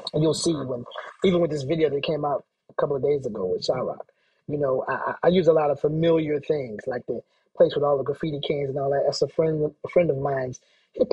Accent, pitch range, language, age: American, 150-210 Hz, English, 30-49